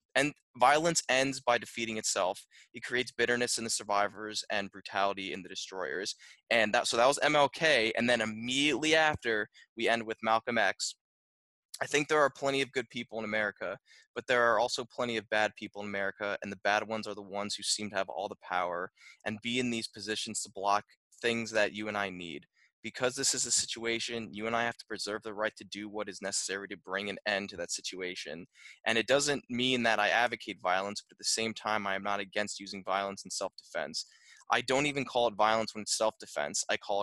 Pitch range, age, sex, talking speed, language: 105-125 Hz, 20-39, male, 220 wpm, English